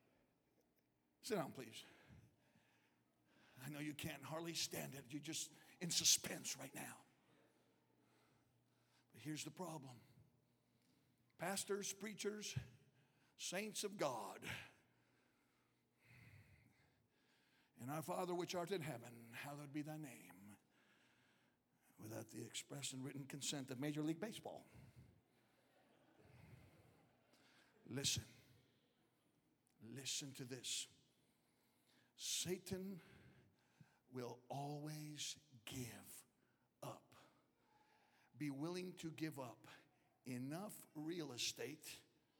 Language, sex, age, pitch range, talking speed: English, male, 60-79, 125-170 Hz, 90 wpm